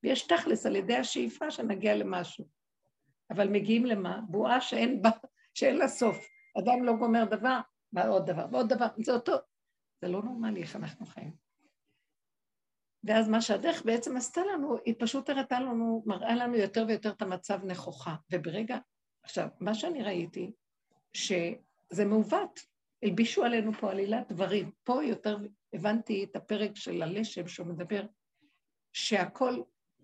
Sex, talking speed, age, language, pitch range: female, 140 wpm, 60-79, Hebrew, 190-240 Hz